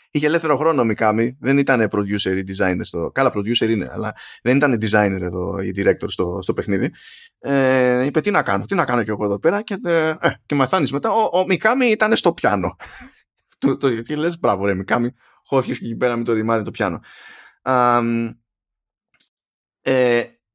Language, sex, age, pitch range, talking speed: Greek, male, 20-39, 110-145 Hz, 190 wpm